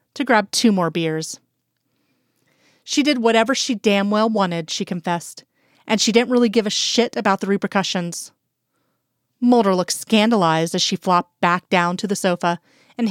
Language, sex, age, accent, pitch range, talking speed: English, female, 30-49, American, 185-230 Hz, 165 wpm